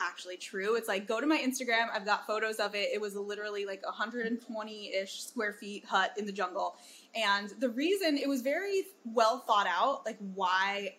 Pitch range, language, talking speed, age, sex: 200-250 Hz, English, 195 wpm, 20-39, female